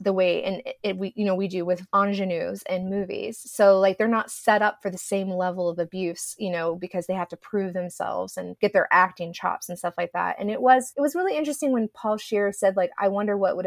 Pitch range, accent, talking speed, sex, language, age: 180-220 Hz, American, 265 wpm, female, English, 20-39